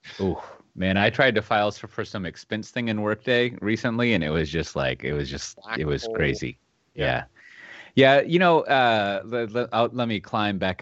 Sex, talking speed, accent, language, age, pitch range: male, 195 wpm, American, English, 30-49, 80-115 Hz